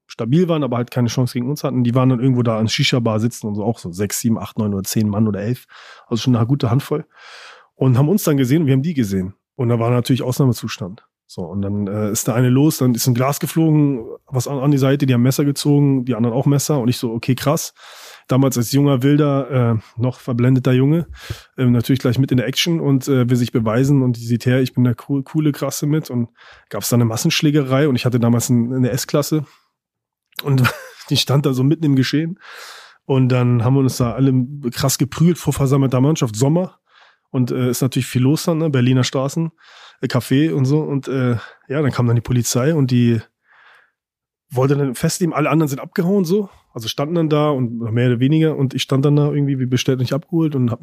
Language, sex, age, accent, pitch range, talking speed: German, male, 30-49, German, 120-145 Hz, 235 wpm